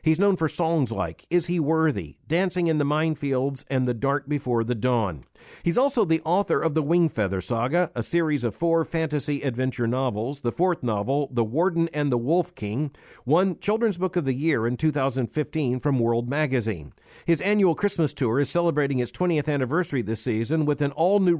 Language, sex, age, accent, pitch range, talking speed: English, male, 50-69, American, 120-165 Hz, 190 wpm